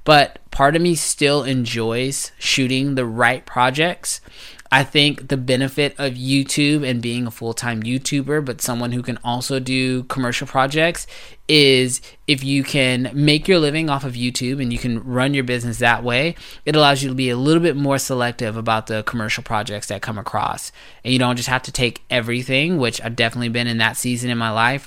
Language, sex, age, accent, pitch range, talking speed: English, male, 20-39, American, 115-135 Hz, 200 wpm